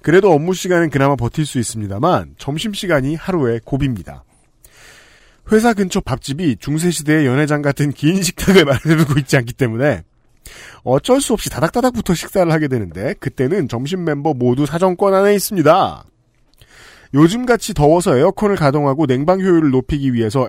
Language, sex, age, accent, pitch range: Korean, male, 40-59, native, 140-195 Hz